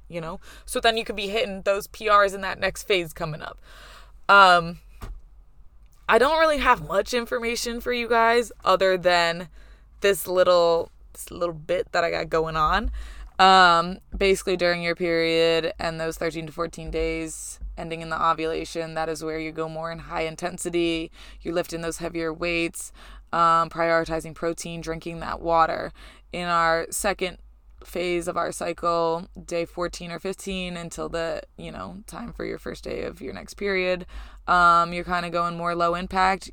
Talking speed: 175 wpm